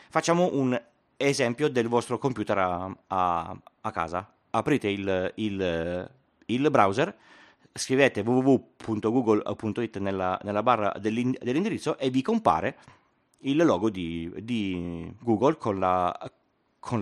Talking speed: 115 wpm